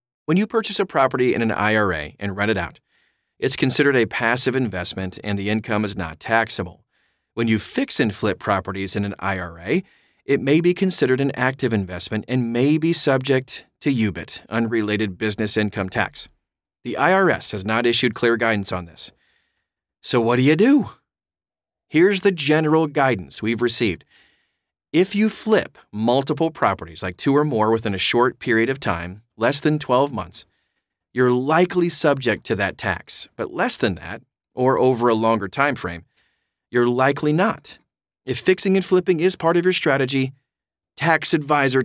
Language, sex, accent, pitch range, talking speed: English, male, American, 105-150 Hz, 170 wpm